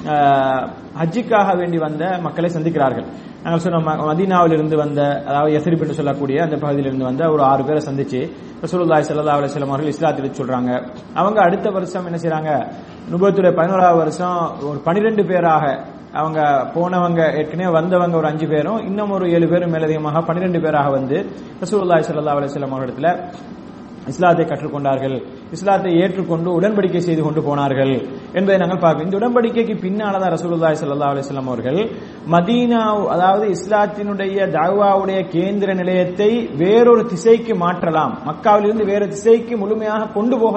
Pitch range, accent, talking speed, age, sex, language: 155-195 Hz, Indian, 105 wpm, 30-49, male, English